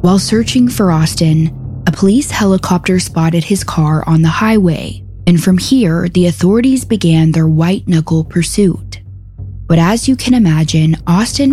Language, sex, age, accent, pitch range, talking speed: English, female, 20-39, American, 160-205 Hz, 150 wpm